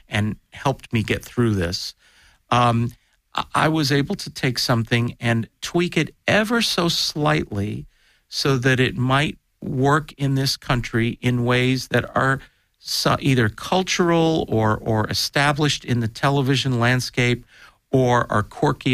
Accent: American